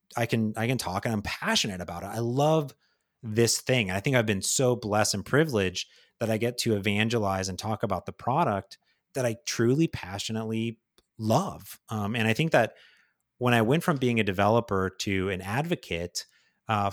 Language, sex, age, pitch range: English, male, 30-49, 105-125 Hz